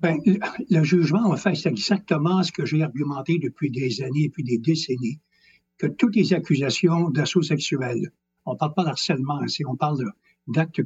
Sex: male